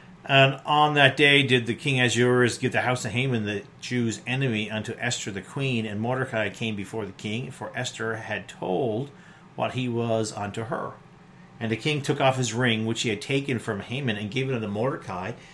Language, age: English, 40-59